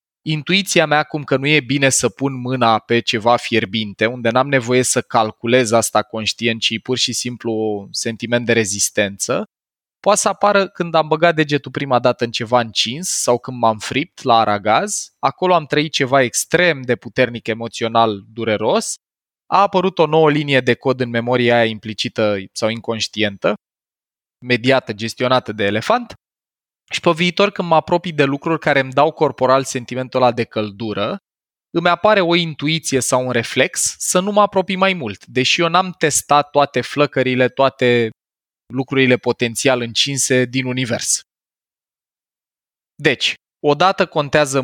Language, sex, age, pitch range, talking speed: Romanian, male, 20-39, 115-160 Hz, 155 wpm